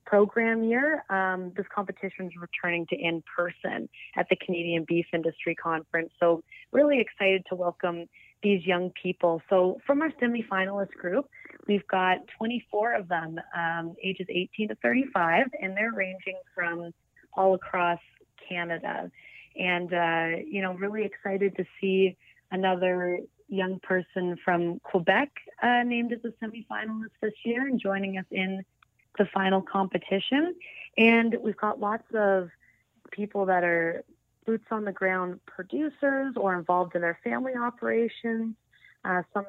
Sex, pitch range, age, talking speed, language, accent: female, 175-210 Hz, 30-49, 145 wpm, English, American